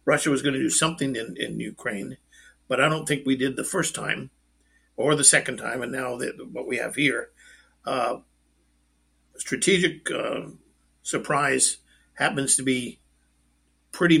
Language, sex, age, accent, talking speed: English, male, 50-69, American, 155 wpm